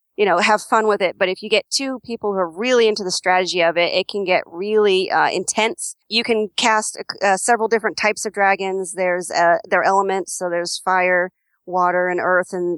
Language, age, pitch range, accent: English, 40-59, 175-205 Hz, American